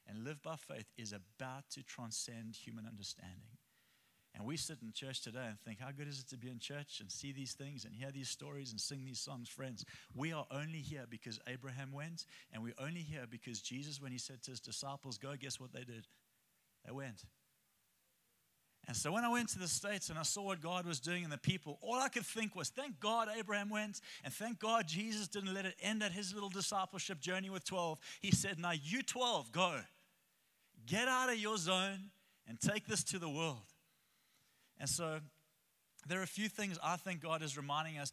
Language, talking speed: English, 215 wpm